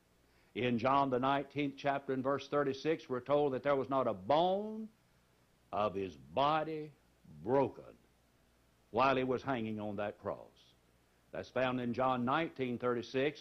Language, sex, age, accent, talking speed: English, male, 60-79, American, 150 wpm